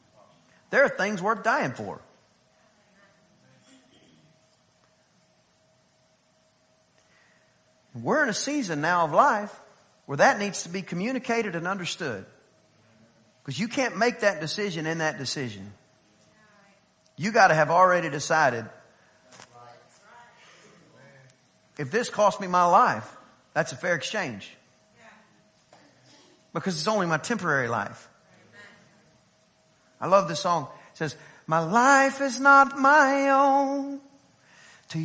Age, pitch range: 40-59, 170-275 Hz